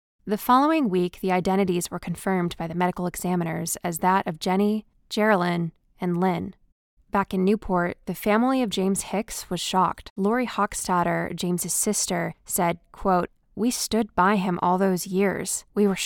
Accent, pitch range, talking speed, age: American, 180-210 Hz, 160 wpm, 20-39